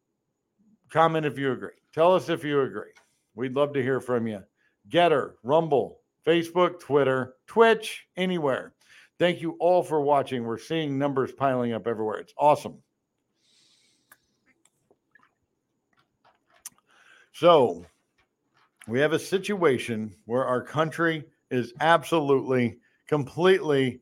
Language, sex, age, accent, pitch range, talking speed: English, male, 60-79, American, 130-175 Hz, 110 wpm